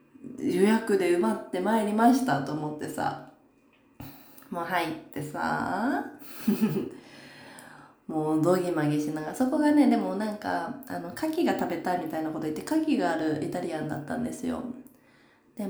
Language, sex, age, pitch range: Japanese, female, 20-39, 155-260 Hz